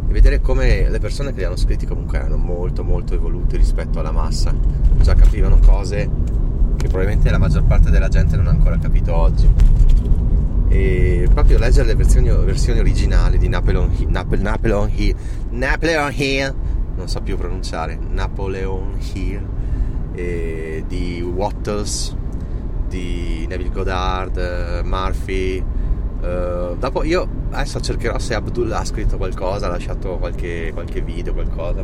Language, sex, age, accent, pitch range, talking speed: Italian, male, 30-49, native, 85-105 Hz, 140 wpm